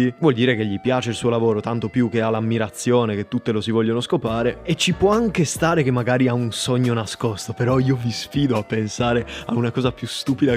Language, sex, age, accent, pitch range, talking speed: Italian, male, 20-39, native, 110-130 Hz, 235 wpm